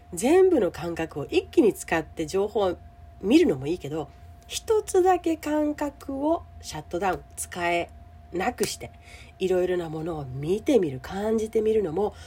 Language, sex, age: Japanese, female, 40-59